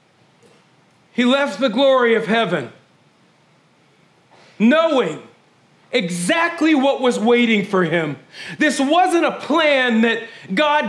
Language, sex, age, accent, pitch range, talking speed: English, male, 40-59, American, 180-280 Hz, 105 wpm